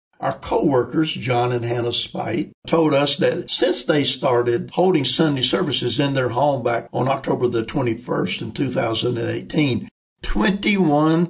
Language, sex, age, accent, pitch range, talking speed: English, male, 60-79, American, 125-165 Hz, 140 wpm